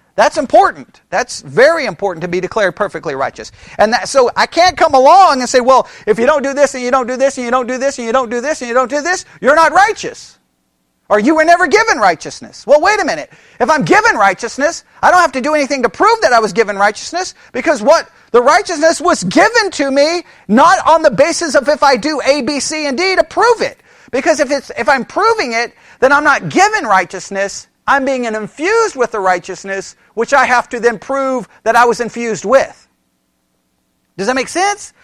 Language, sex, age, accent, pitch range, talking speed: English, male, 40-59, American, 235-325 Hz, 230 wpm